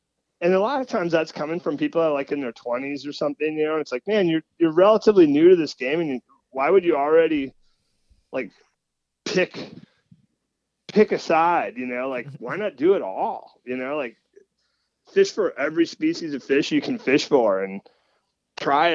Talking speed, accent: 205 wpm, American